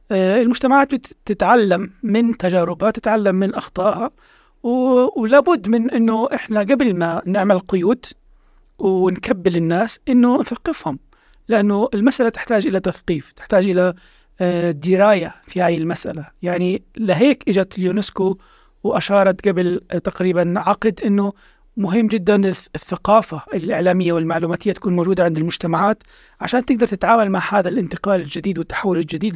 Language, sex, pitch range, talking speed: Arabic, male, 180-225 Hz, 120 wpm